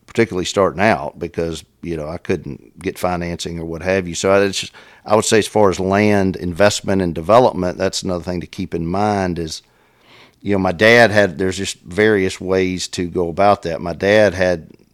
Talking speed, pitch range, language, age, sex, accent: 195 wpm, 85-95 Hz, English, 50-69, male, American